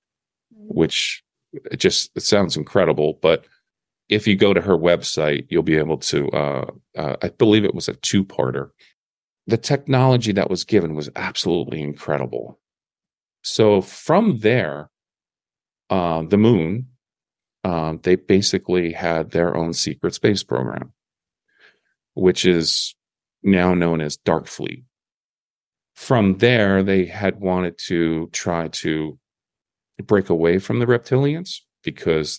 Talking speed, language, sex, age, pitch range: 130 wpm, English, male, 40-59, 80-100 Hz